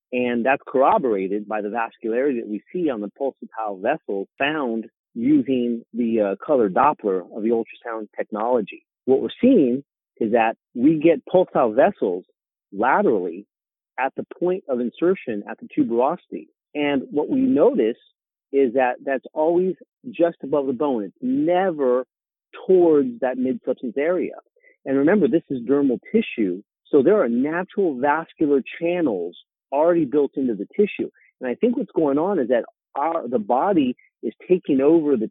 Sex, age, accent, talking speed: male, 40-59, American, 155 wpm